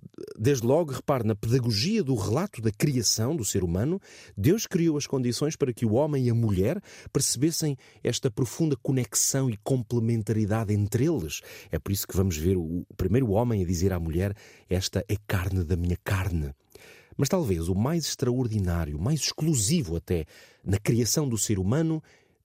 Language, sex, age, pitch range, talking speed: Portuguese, male, 30-49, 95-130 Hz, 170 wpm